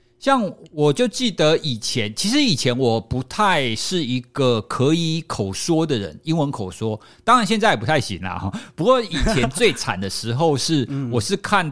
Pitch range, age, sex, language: 115-175 Hz, 50-69, male, Chinese